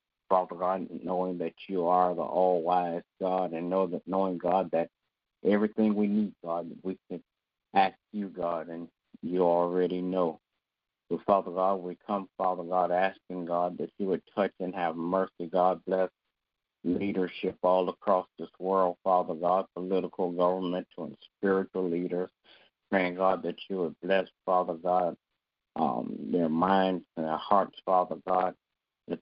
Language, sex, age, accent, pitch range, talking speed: English, male, 50-69, American, 90-95 Hz, 155 wpm